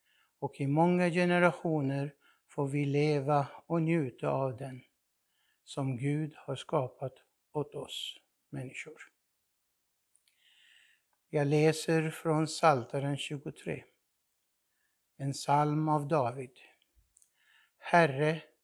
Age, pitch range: 60-79, 135-155 Hz